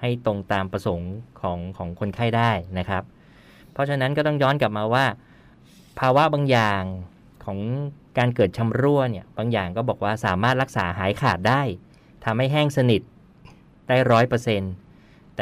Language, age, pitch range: Thai, 20-39, 105-130 Hz